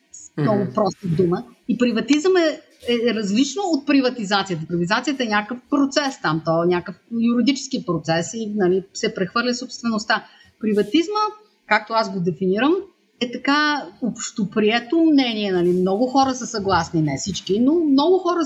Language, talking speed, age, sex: Bulgarian, 145 wpm, 30-49, female